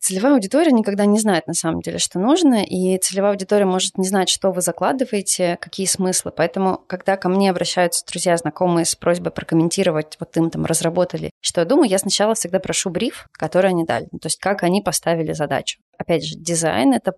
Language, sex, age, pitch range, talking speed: Russian, female, 20-39, 170-210 Hz, 195 wpm